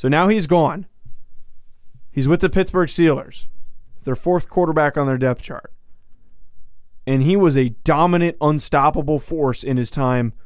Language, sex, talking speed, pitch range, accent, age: English, male, 150 wpm, 125-160 Hz, American, 20-39